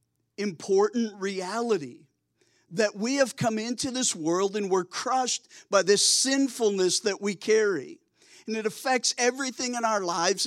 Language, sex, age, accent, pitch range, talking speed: English, male, 50-69, American, 195-245 Hz, 145 wpm